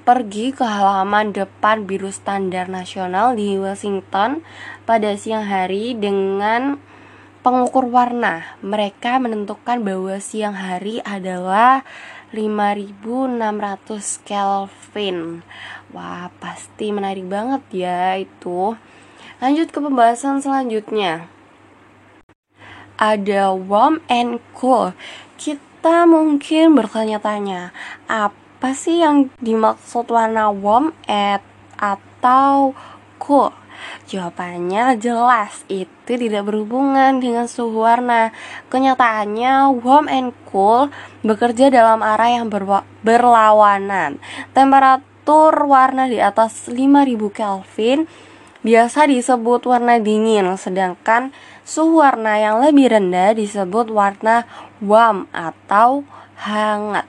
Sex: female